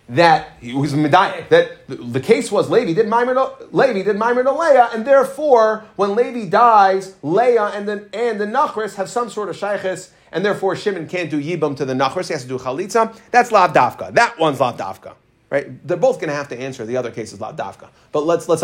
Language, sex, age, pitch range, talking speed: English, male, 30-49, 150-225 Hz, 205 wpm